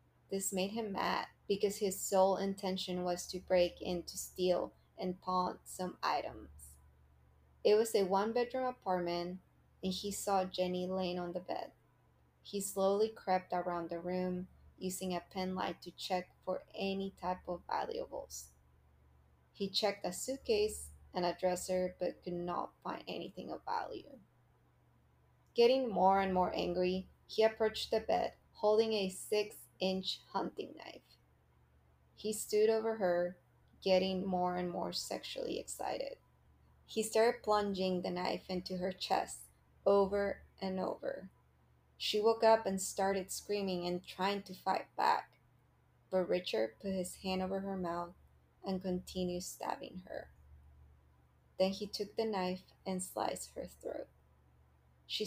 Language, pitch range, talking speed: English, 170-195 Hz, 145 wpm